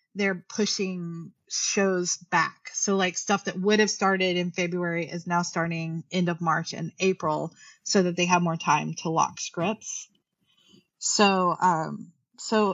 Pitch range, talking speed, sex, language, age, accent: 180-225 Hz, 155 wpm, female, English, 30-49, American